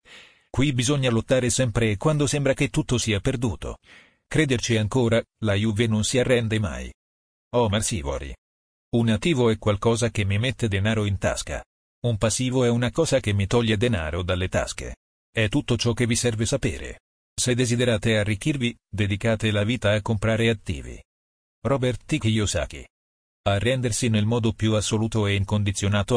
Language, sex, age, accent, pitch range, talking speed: Italian, male, 40-59, native, 100-125 Hz, 155 wpm